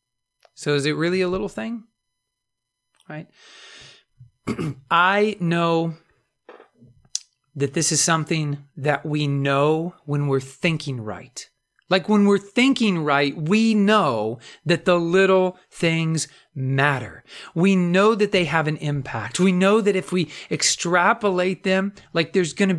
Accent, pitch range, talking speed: American, 140-185 Hz, 135 wpm